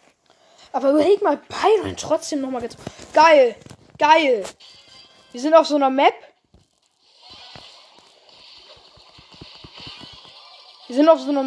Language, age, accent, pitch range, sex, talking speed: German, 10-29, German, 230-310 Hz, female, 105 wpm